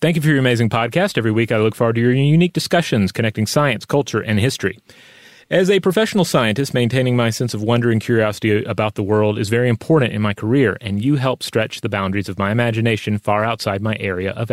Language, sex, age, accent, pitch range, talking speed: English, male, 30-49, American, 105-140 Hz, 225 wpm